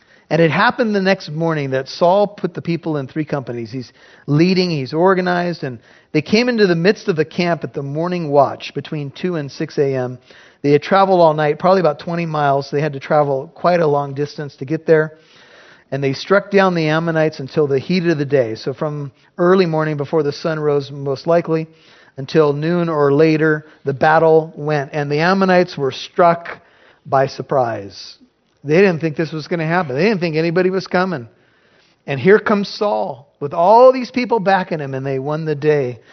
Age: 50-69